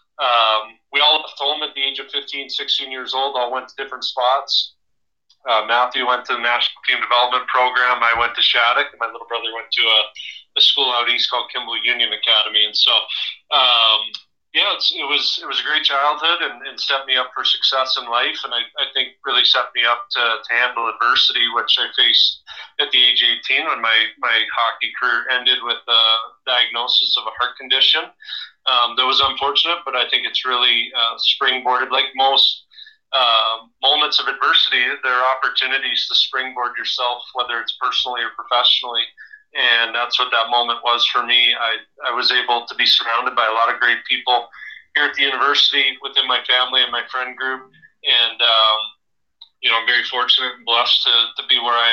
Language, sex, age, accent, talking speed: English, male, 30-49, American, 200 wpm